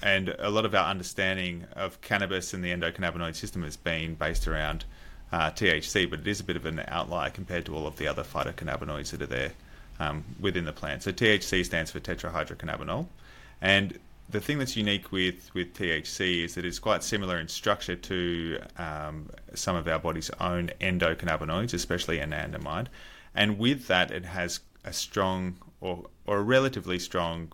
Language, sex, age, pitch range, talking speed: English, male, 30-49, 80-100 Hz, 180 wpm